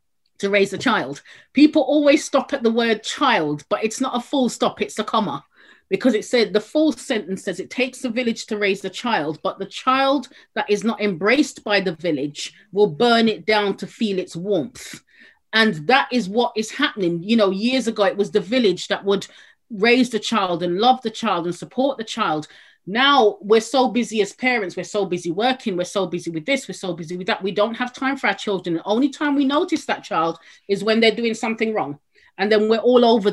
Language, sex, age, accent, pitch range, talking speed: English, female, 30-49, British, 195-250 Hz, 225 wpm